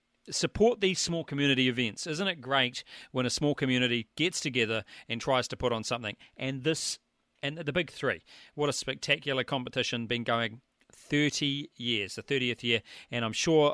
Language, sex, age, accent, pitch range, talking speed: English, male, 40-59, Australian, 125-160 Hz, 175 wpm